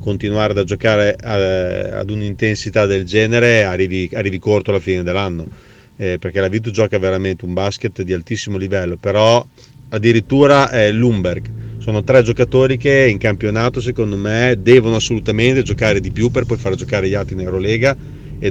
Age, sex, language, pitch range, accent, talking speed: 40-59, male, Italian, 105-125 Hz, native, 160 wpm